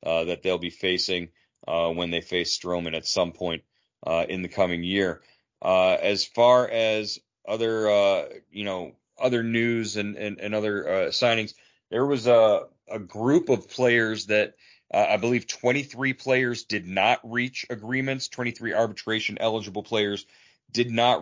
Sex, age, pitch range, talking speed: male, 30-49, 100-120 Hz, 160 wpm